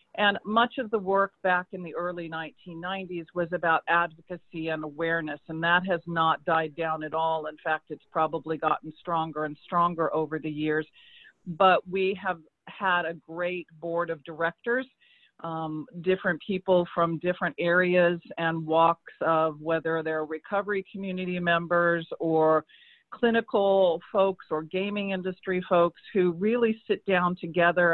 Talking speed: 150 wpm